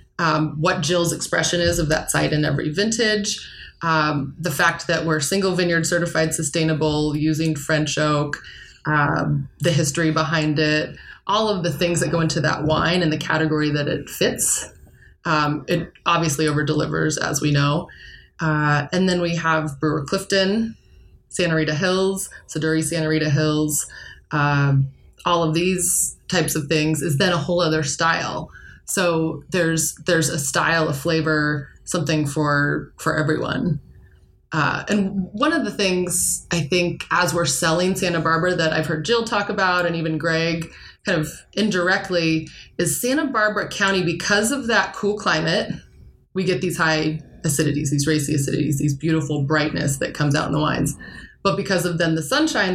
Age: 20-39